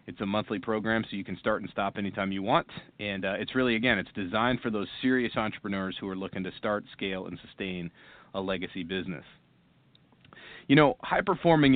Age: 30-49